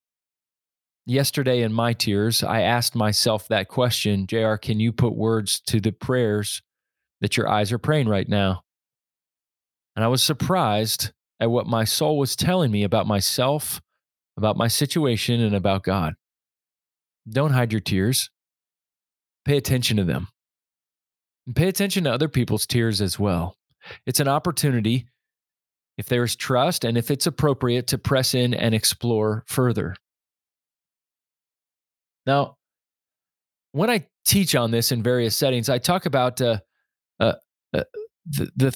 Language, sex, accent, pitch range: English, male, American, 110-135 Hz